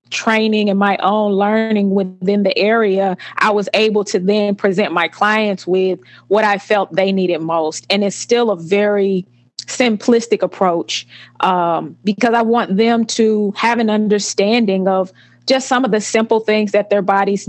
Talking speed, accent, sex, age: 170 wpm, American, female, 20-39